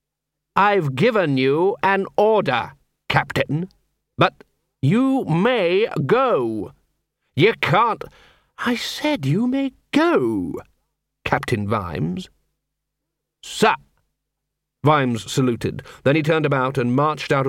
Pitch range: 125-170 Hz